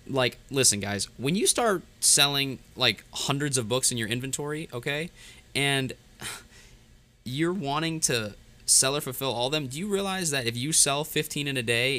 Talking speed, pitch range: 170 wpm, 105-135 Hz